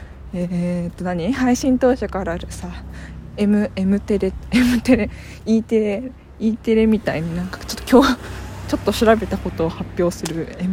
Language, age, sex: Japanese, 20-39, female